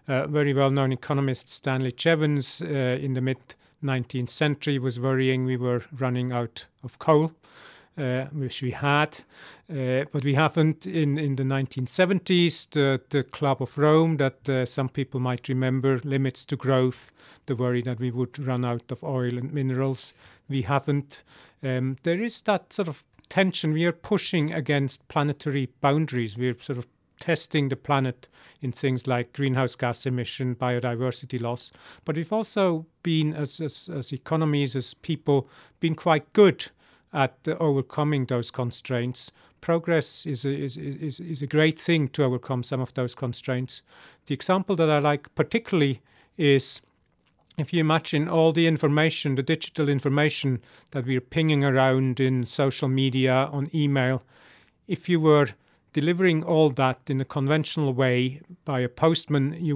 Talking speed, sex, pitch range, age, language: 155 wpm, male, 130-155 Hz, 40-59, English